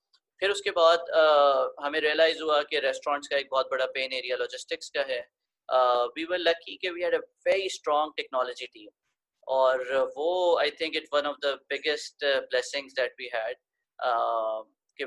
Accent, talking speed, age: Indian, 175 wpm, 20-39